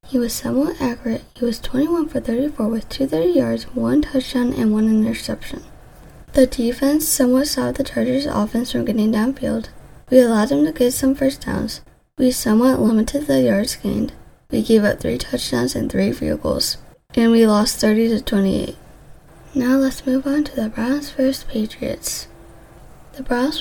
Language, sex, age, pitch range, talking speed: English, female, 20-39, 225-275 Hz, 170 wpm